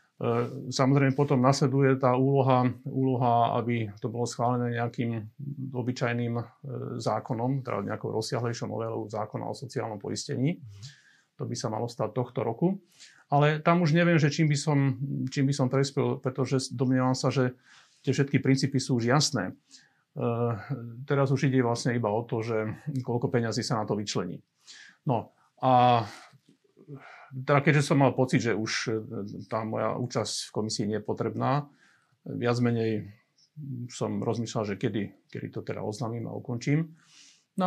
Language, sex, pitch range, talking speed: Slovak, male, 115-140 Hz, 145 wpm